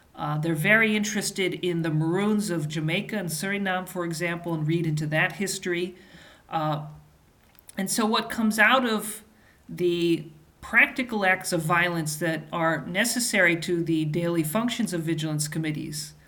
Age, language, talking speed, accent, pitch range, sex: 40-59, English, 145 wpm, American, 155-195 Hz, male